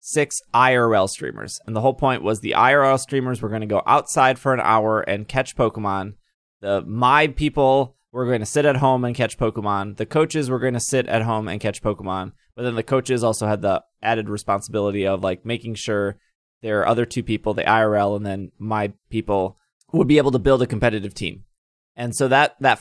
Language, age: English, 20-39